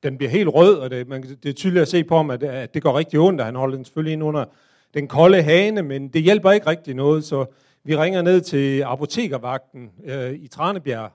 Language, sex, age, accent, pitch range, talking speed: Danish, male, 40-59, native, 135-175 Hz, 235 wpm